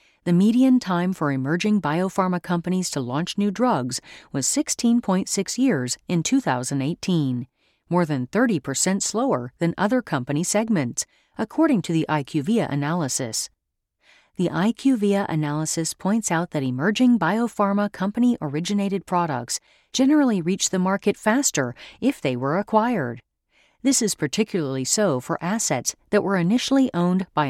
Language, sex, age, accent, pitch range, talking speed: English, female, 40-59, American, 150-220 Hz, 130 wpm